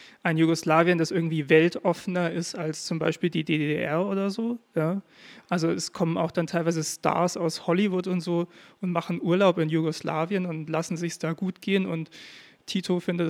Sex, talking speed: male, 175 wpm